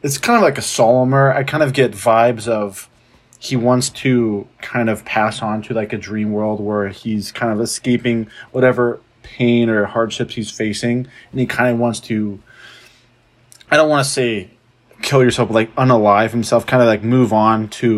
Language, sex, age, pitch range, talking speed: English, male, 20-39, 110-125 Hz, 195 wpm